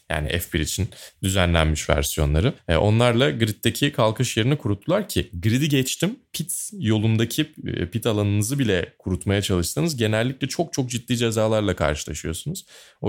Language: Turkish